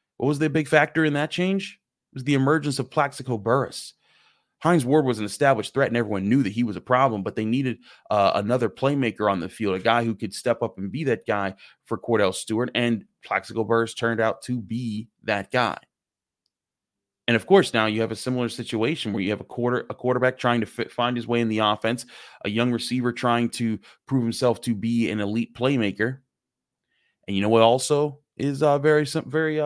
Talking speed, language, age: 210 wpm, English, 30-49